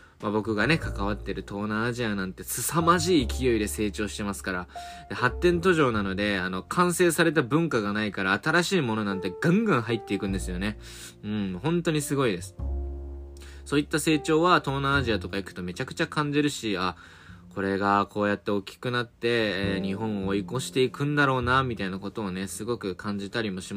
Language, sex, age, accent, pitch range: Japanese, male, 20-39, native, 100-155 Hz